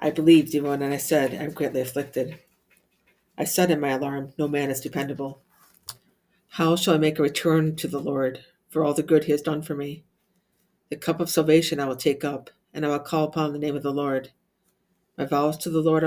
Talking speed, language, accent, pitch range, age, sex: 225 wpm, English, American, 140-160 Hz, 50-69, female